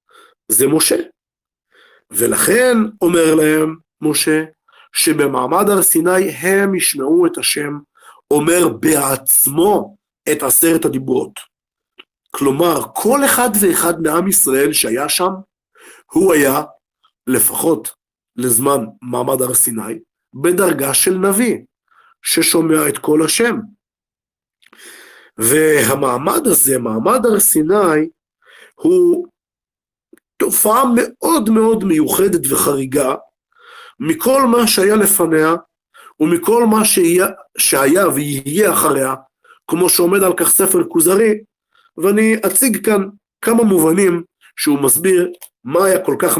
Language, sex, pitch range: Hebrew, male, 160-240 Hz